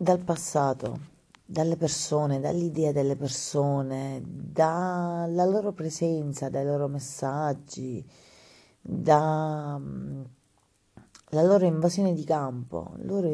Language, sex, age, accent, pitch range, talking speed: Italian, female, 30-49, native, 130-160 Hz, 85 wpm